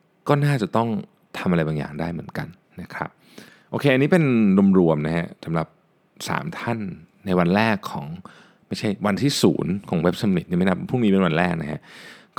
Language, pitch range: Thai, 85-110 Hz